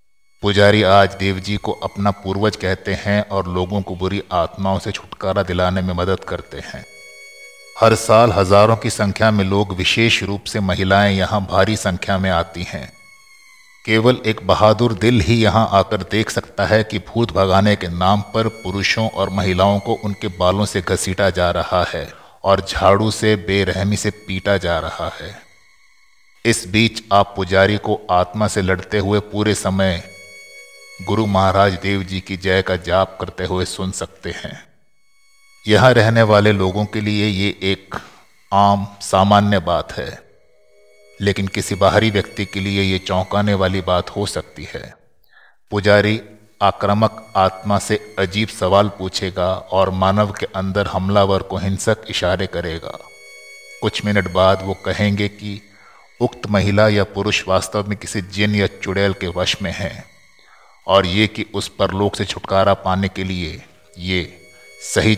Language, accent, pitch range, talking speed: Hindi, native, 95-105 Hz, 155 wpm